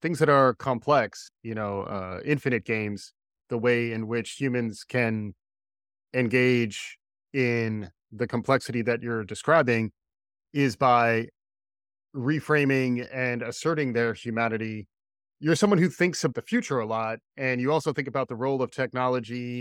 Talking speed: 145 wpm